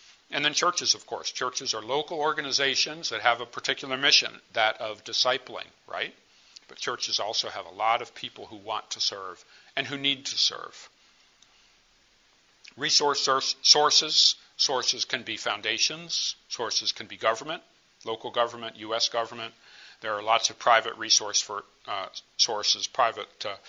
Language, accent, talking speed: English, American, 150 wpm